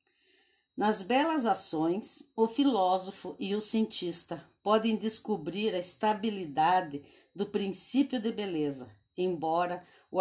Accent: Brazilian